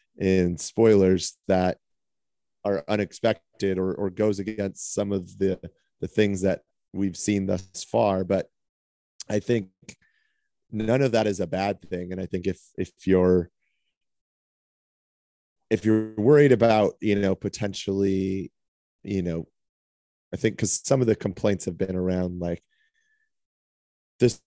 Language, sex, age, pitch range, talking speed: English, male, 30-49, 90-105 Hz, 135 wpm